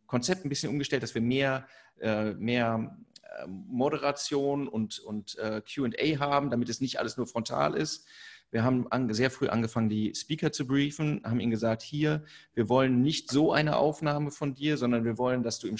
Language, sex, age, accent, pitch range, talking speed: German, male, 30-49, German, 115-140 Hz, 175 wpm